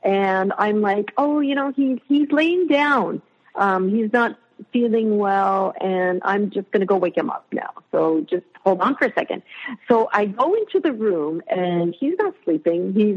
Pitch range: 185-265 Hz